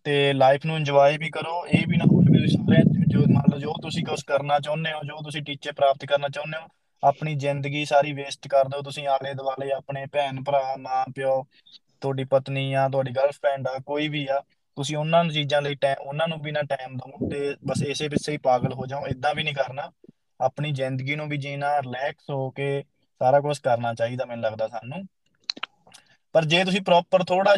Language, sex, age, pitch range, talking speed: Punjabi, male, 20-39, 135-160 Hz, 200 wpm